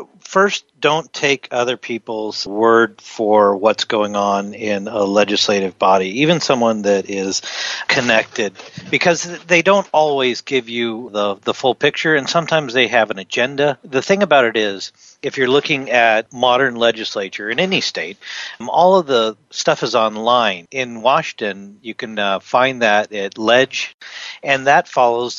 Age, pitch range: 40-59, 105-135 Hz